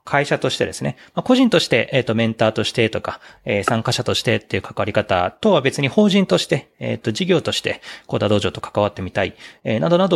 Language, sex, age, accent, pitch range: Japanese, male, 30-49, native, 100-145 Hz